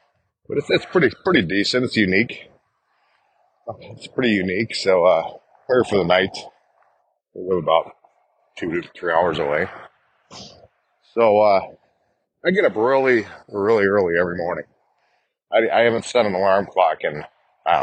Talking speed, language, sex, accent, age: 150 wpm, English, male, American, 40-59